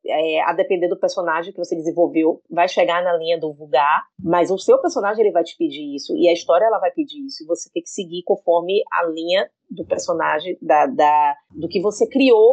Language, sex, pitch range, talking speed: Portuguese, female, 175-280 Hz, 195 wpm